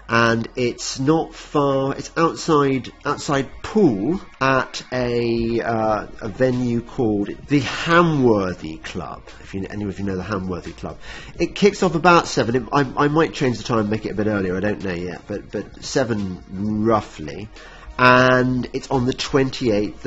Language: English